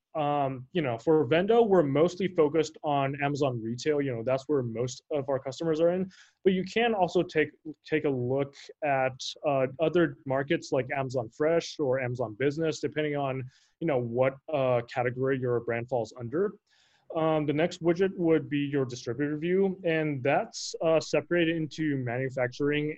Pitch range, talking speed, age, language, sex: 130-160 Hz, 170 wpm, 20-39, English, male